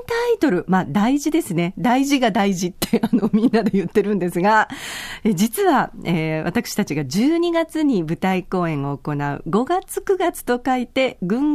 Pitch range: 170-250 Hz